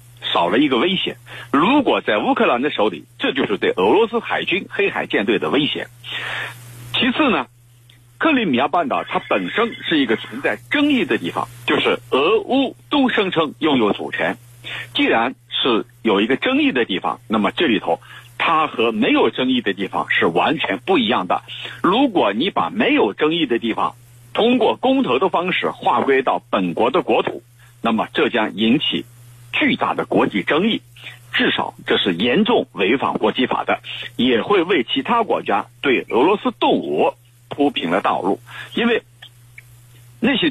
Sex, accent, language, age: male, native, Chinese, 50-69